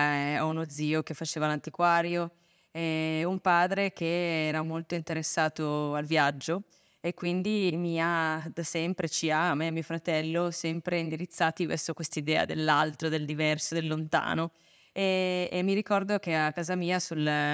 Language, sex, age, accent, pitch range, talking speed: Italian, female, 20-39, native, 160-185 Hz, 165 wpm